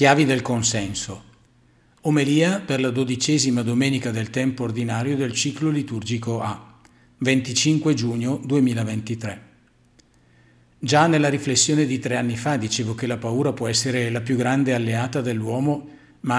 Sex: male